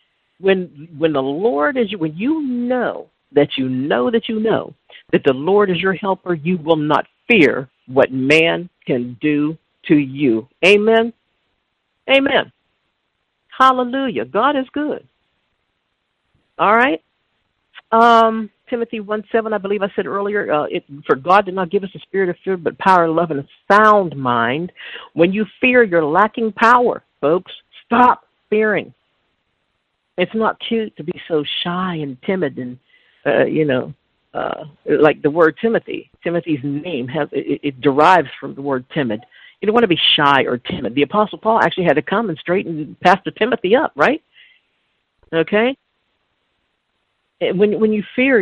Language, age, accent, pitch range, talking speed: English, 50-69, American, 155-220 Hz, 160 wpm